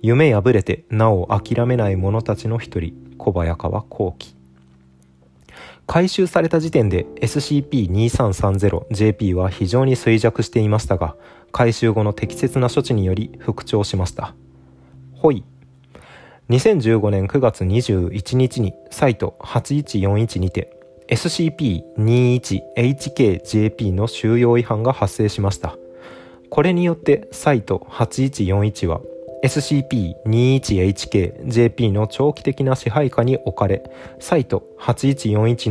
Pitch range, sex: 95-130 Hz, male